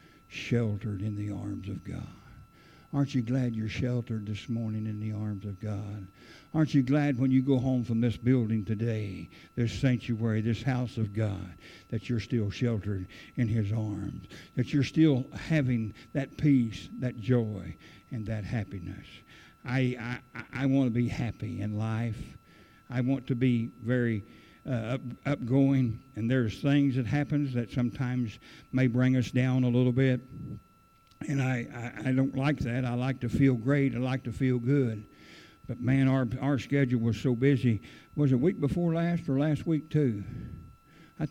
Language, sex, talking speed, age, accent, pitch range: English, male, 175 wpm, 60-79, American, 110-145 Hz